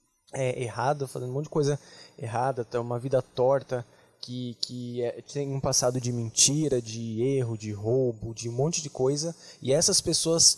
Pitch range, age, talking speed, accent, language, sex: 125-165 Hz, 20-39, 175 wpm, Brazilian, Portuguese, male